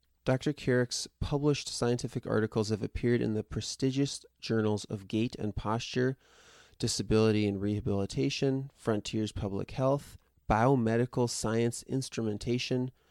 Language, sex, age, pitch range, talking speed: English, male, 30-49, 105-130 Hz, 110 wpm